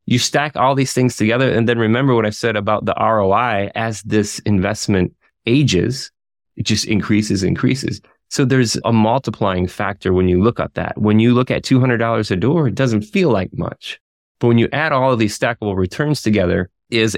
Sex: male